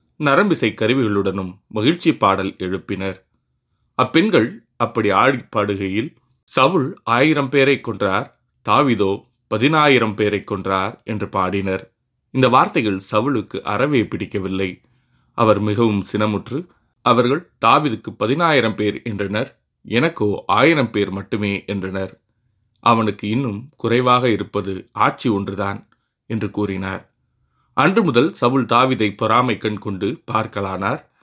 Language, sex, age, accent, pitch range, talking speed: Tamil, male, 30-49, native, 100-120 Hz, 100 wpm